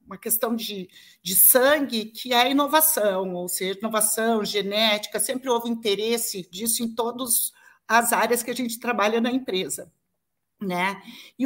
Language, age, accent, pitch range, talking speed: Portuguese, 50-69, Brazilian, 215-295 Hz, 150 wpm